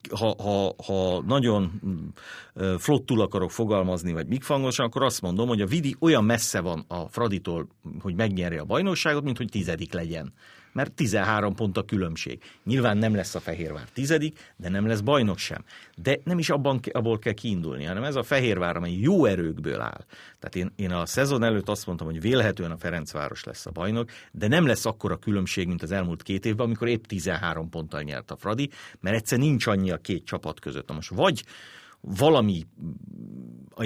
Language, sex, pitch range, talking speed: Hungarian, male, 90-125 Hz, 185 wpm